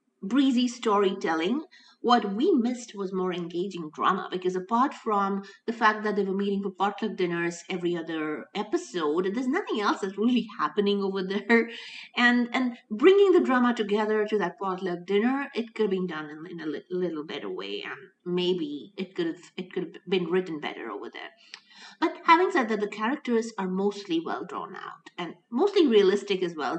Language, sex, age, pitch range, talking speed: English, female, 50-69, 180-240 Hz, 190 wpm